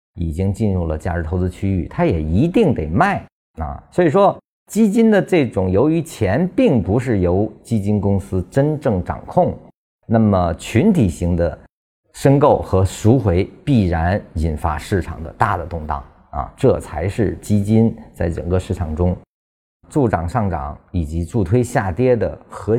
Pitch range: 85-115 Hz